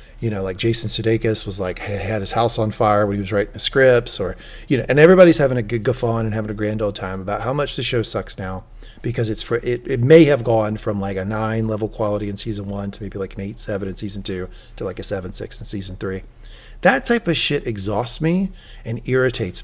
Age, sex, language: 40-59, male, English